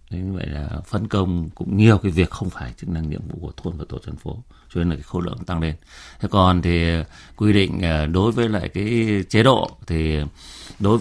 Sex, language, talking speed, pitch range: male, Vietnamese, 235 wpm, 75-100 Hz